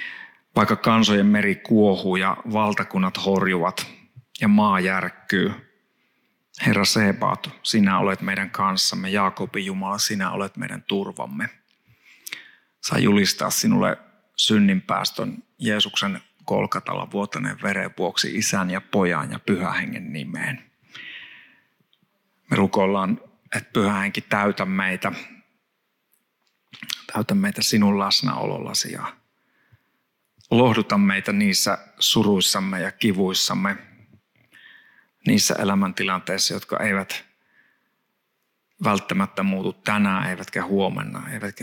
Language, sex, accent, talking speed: Finnish, male, native, 90 wpm